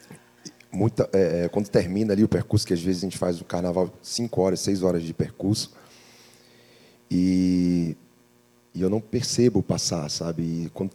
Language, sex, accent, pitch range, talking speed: Portuguese, male, Brazilian, 95-115 Hz, 170 wpm